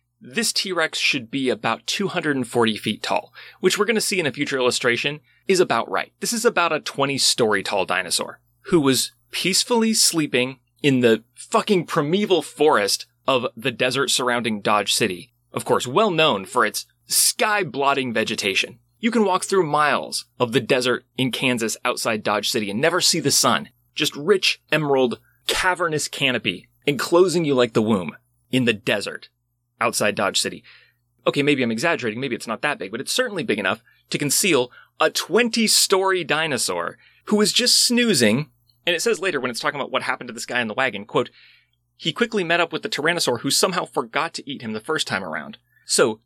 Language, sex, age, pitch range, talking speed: English, male, 30-49, 120-190 Hz, 185 wpm